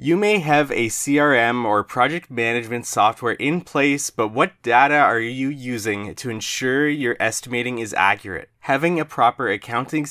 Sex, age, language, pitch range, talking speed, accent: male, 20-39, English, 110-150 Hz, 160 wpm, American